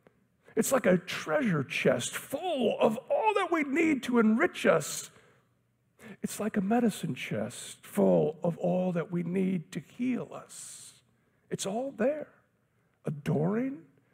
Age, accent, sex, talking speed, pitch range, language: 50-69, American, male, 135 wpm, 165-220 Hz, English